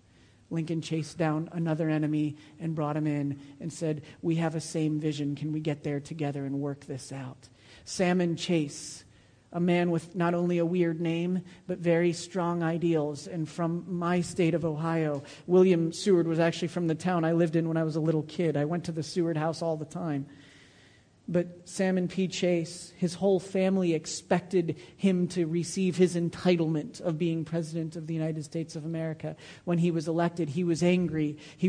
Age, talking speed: 40-59, 190 wpm